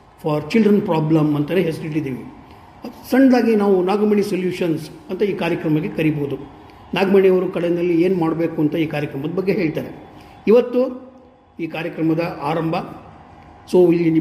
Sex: male